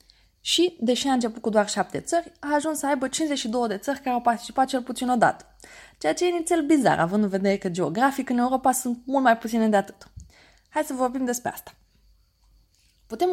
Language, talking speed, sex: Romanian, 200 wpm, female